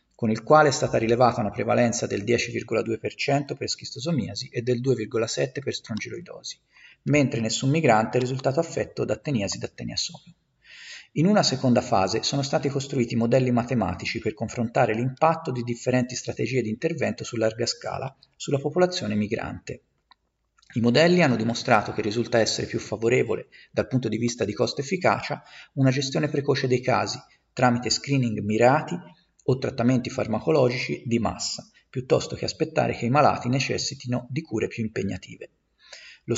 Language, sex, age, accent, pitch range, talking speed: Italian, male, 40-59, native, 115-140 Hz, 150 wpm